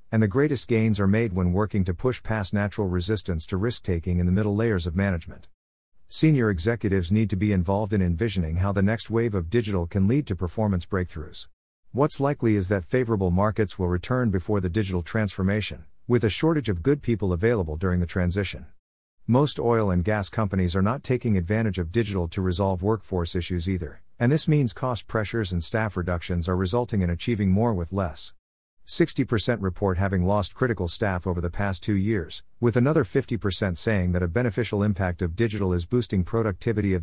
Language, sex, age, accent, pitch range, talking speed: English, male, 50-69, American, 90-115 Hz, 195 wpm